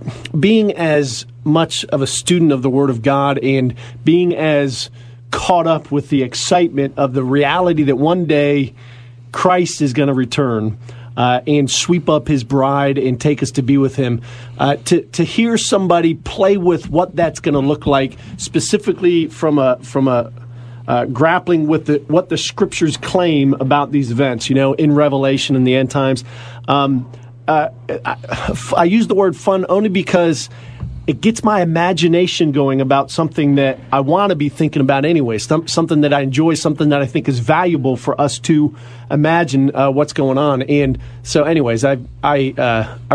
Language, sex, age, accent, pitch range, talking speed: English, male, 40-59, American, 125-160 Hz, 180 wpm